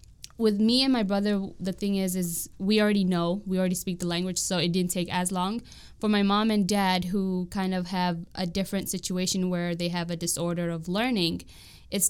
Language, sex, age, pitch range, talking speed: English, female, 10-29, 175-195 Hz, 215 wpm